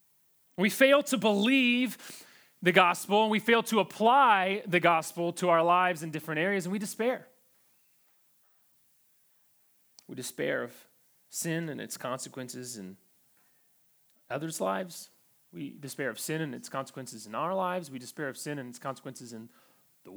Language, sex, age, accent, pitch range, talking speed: English, male, 30-49, American, 145-205 Hz, 150 wpm